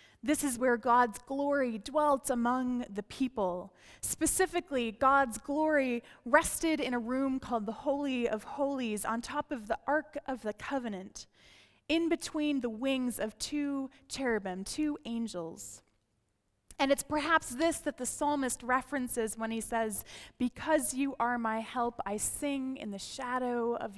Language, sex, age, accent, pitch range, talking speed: English, female, 20-39, American, 215-275 Hz, 150 wpm